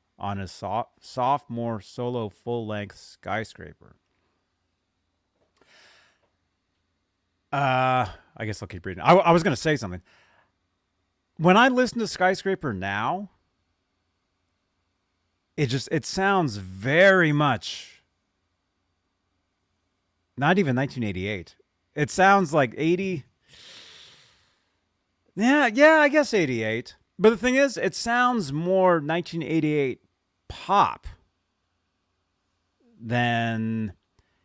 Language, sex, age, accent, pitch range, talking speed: English, male, 30-49, American, 90-150 Hz, 90 wpm